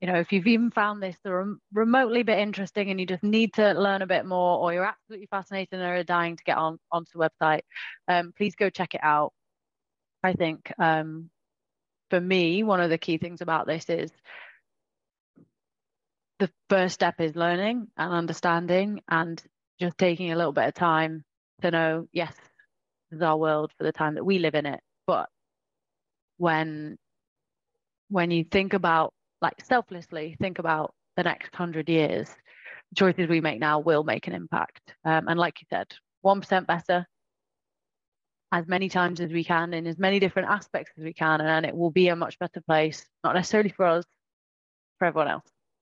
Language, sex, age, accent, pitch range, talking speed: English, female, 20-39, British, 165-195 Hz, 185 wpm